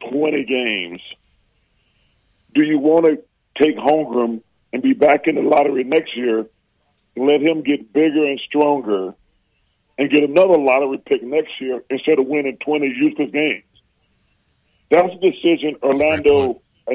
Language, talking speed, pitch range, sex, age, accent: English, 140 wpm, 120-155 Hz, male, 40-59, American